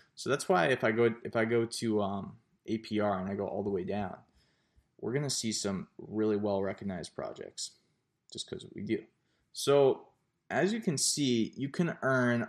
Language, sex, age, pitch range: English, male, 20-39, 105-125 Hz